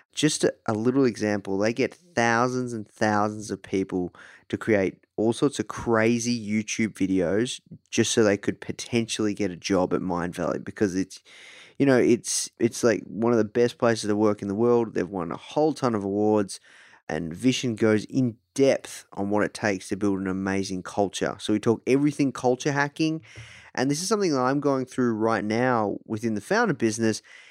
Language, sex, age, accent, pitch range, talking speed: English, male, 20-39, Australian, 105-125 Hz, 190 wpm